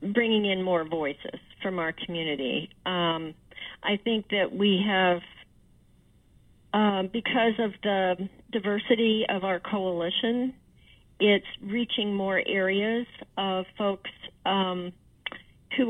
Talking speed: 110 wpm